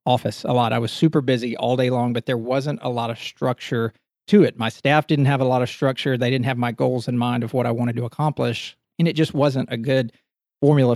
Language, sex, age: English, male, 40-59